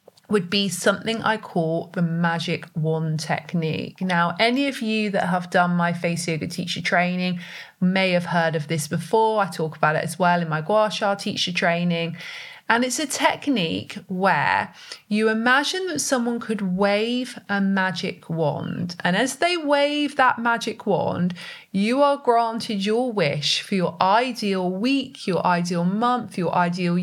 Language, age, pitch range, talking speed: English, 30-49, 170-225 Hz, 165 wpm